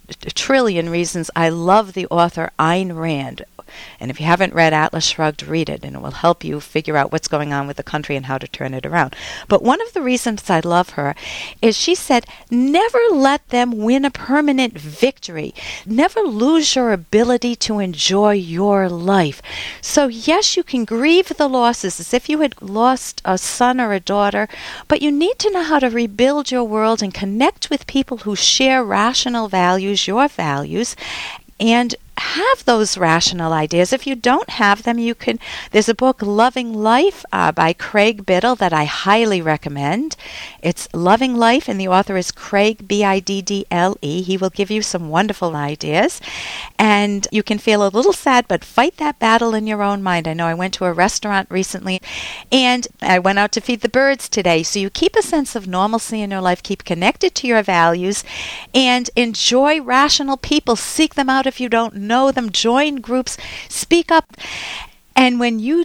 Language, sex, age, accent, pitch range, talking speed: English, female, 50-69, American, 185-255 Hz, 190 wpm